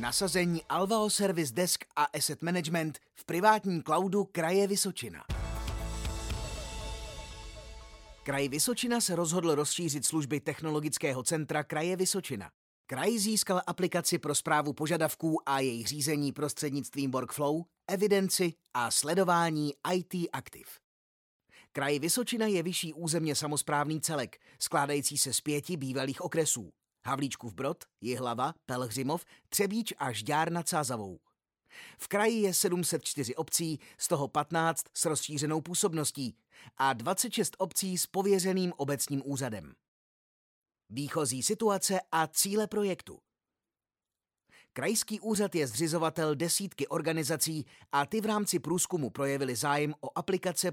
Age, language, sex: 30-49, Czech, male